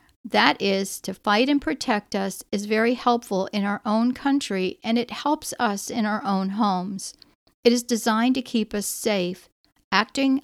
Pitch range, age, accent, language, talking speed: 195-255 Hz, 50-69, American, English, 170 wpm